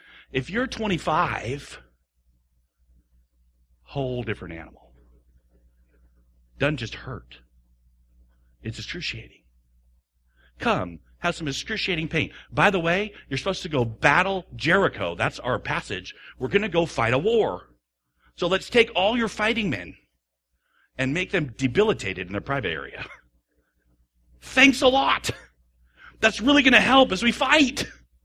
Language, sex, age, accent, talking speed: English, male, 50-69, American, 130 wpm